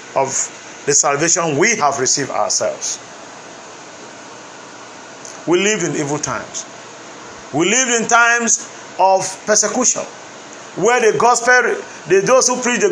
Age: 50-69